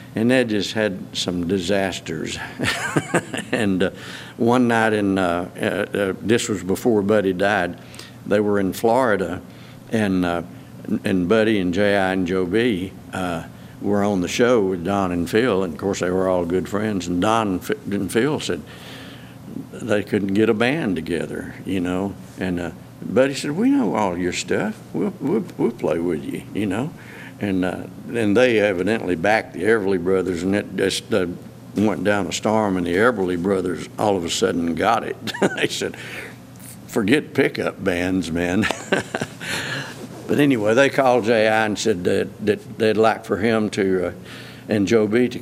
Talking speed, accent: 175 wpm, American